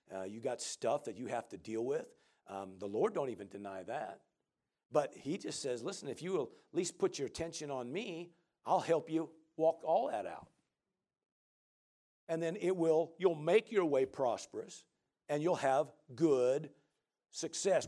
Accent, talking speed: American, 180 wpm